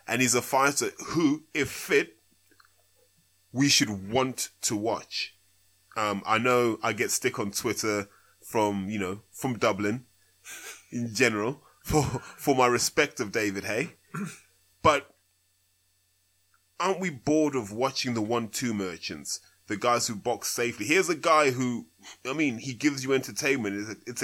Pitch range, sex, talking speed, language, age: 100-140 Hz, male, 155 wpm, English, 20-39